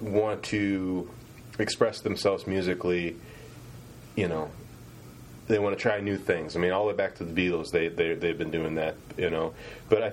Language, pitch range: English, 95-125 Hz